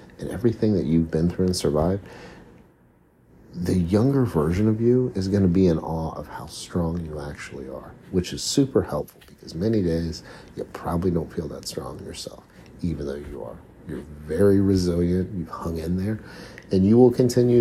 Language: English